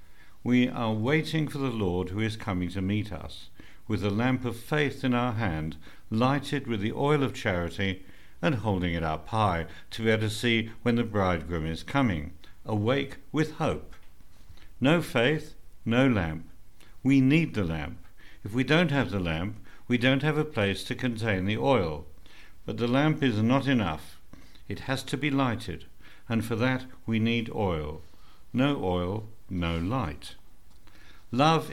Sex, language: male, English